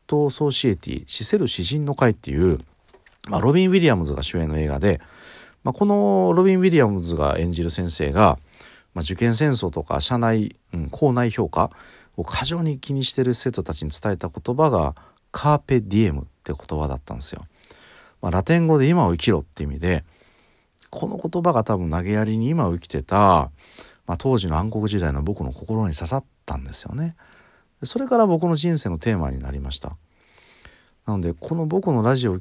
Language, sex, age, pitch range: Japanese, male, 40-59, 85-135 Hz